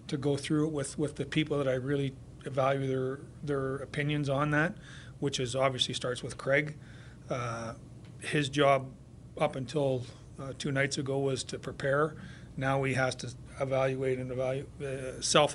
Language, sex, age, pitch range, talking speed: English, male, 40-59, 130-145 Hz, 175 wpm